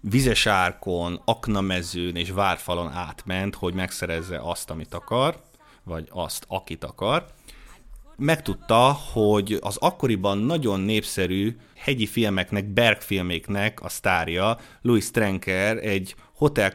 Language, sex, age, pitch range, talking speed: Hungarian, male, 30-49, 90-110 Hz, 105 wpm